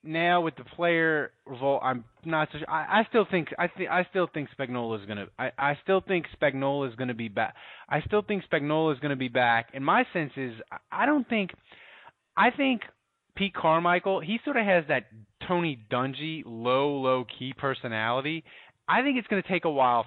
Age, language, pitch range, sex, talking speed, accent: 20-39, English, 125-170 Hz, male, 205 wpm, American